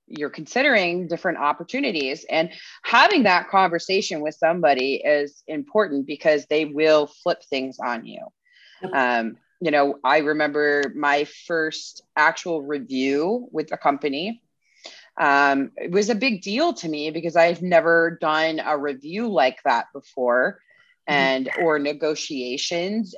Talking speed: 130 wpm